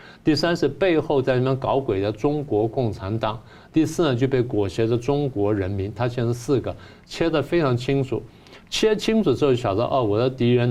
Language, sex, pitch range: Chinese, male, 110-140 Hz